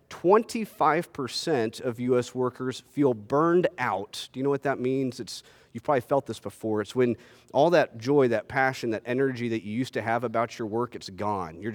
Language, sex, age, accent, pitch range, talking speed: English, male, 40-59, American, 115-145 Hz, 205 wpm